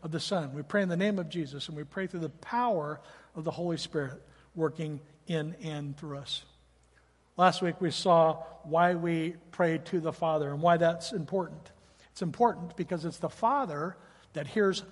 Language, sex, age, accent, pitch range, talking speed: English, male, 60-79, American, 160-200 Hz, 190 wpm